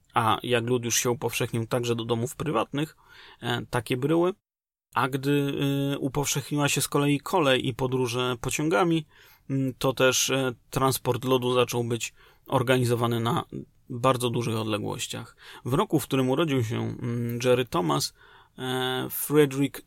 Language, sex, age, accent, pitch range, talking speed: Polish, male, 30-49, native, 120-140 Hz, 125 wpm